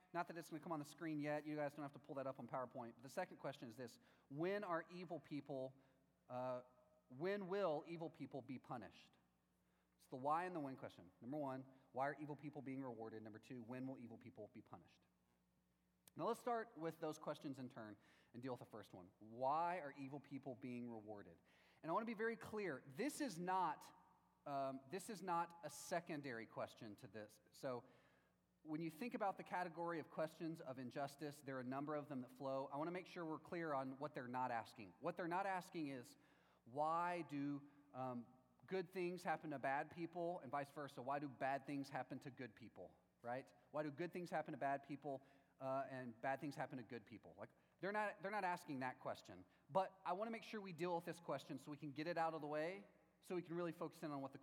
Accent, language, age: American, English, 30-49